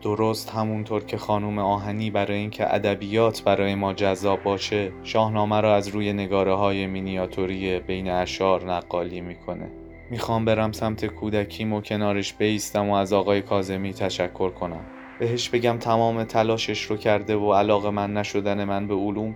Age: 20-39